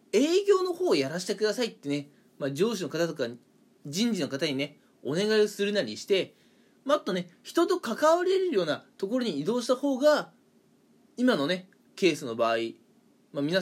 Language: Japanese